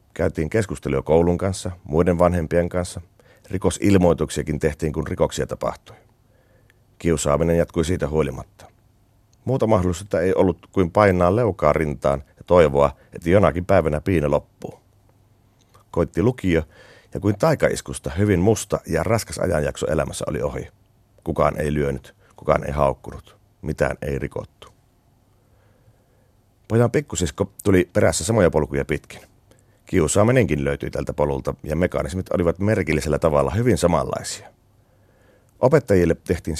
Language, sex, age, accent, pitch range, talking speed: Finnish, male, 40-59, native, 80-110 Hz, 120 wpm